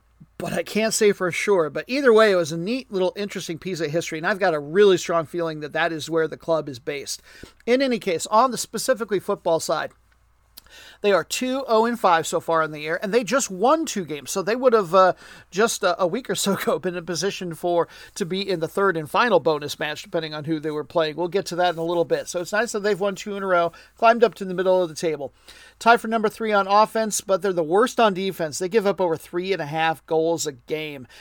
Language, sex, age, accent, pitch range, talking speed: English, male, 40-59, American, 165-210 Hz, 255 wpm